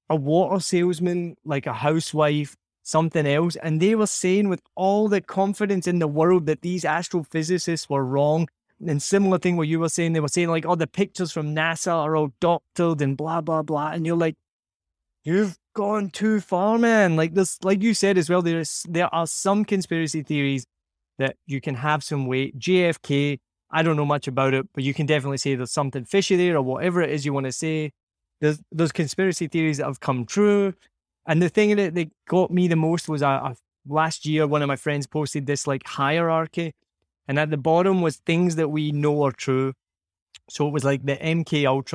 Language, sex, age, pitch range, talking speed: English, male, 20-39, 140-175 Hz, 210 wpm